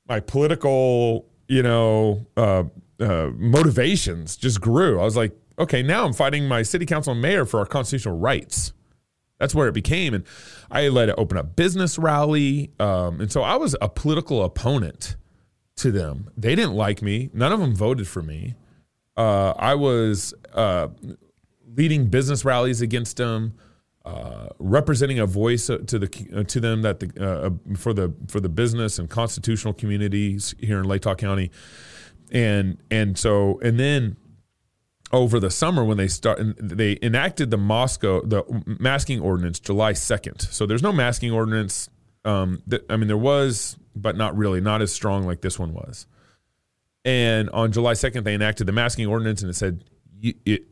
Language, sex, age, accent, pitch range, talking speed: English, male, 30-49, American, 100-125 Hz, 170 wpm